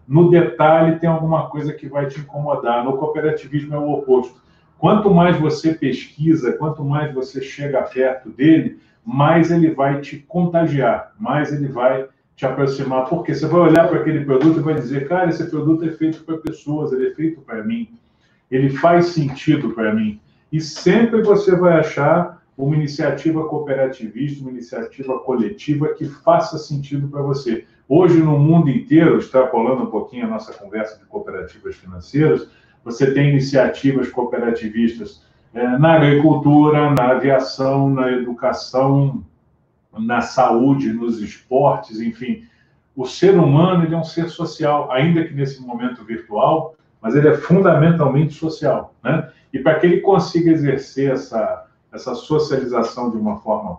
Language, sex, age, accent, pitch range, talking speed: Portuguese, male, 40-59, Brazilian, 135-160 Hz, 150 wpm